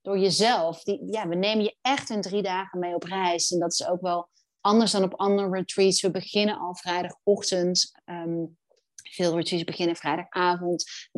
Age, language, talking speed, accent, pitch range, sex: 30-49, Dutch, 170 wpm, Dutch, 175-205 Hz, female